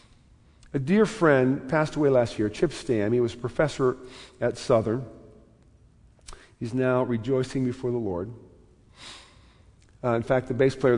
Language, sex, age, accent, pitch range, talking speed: English, male, 50-69, American, 115-150 Hz, 150 wpm